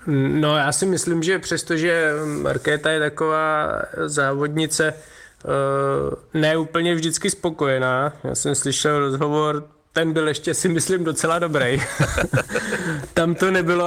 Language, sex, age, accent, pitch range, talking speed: Czech, male, 20-39, native, 145-165 Hz, 120 wpm